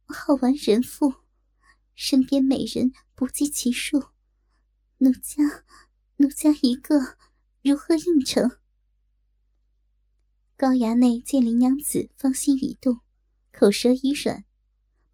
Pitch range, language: 250-285 Hz, Chinese